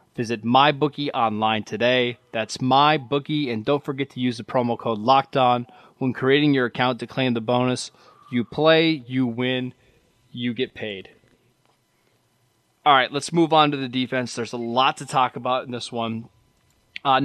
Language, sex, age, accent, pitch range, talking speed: English, male, 20-39, American, 120-140 Hz, 165 wpm